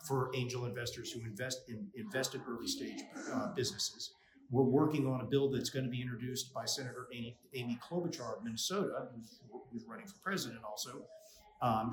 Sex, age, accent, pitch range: male, 40-59, American, 120-145 Hz